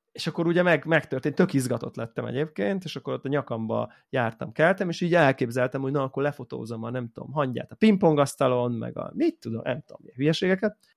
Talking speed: 200 wpm